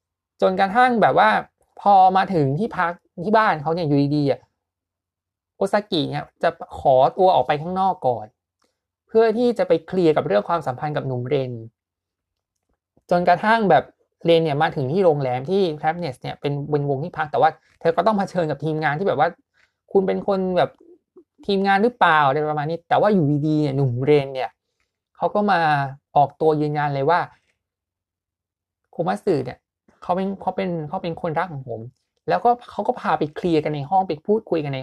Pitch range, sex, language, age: 140-195 Hz, male, Thai, 20-39